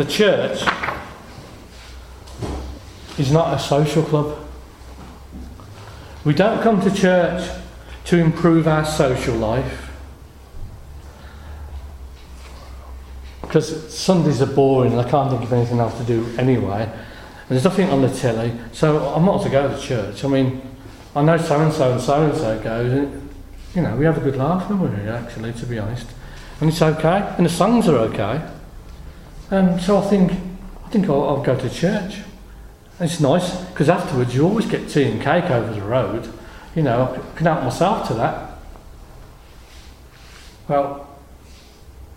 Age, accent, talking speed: 40-59, British, 155 wpm